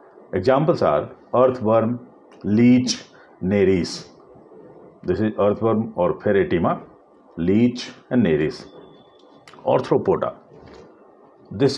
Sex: male